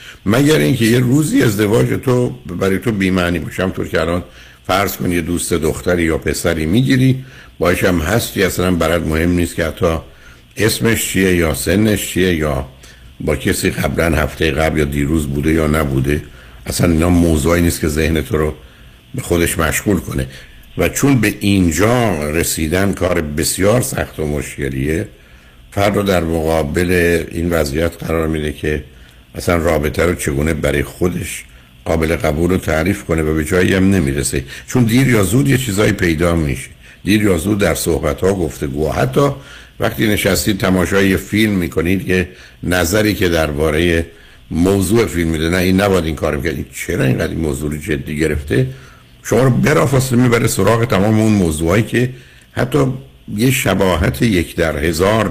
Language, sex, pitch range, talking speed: Persian, male, 75-100 Hz, 160 wpm